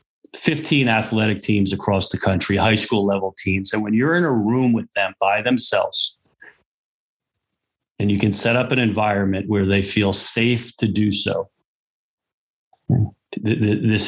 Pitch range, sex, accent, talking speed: 100-115 Hz, male, American, 150 wpm